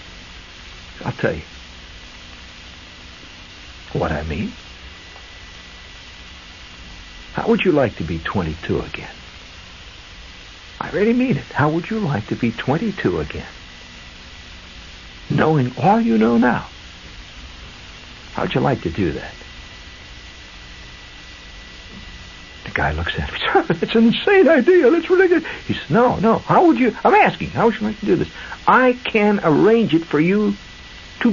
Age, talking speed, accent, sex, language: 60-79, 140 wpm, American, male, English